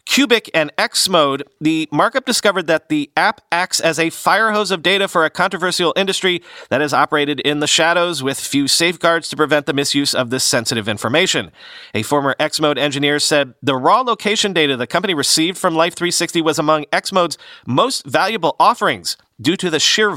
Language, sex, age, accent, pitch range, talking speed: English, male, 40-59, American, 145-185 Hz, 180 wpm